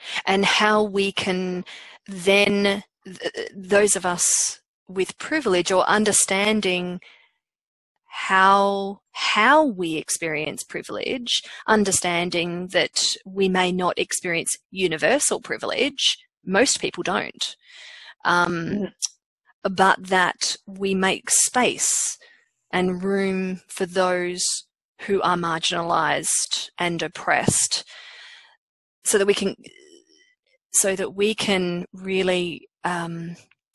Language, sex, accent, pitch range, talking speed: English, female, Australian, 180-210 Hz, 95 wpm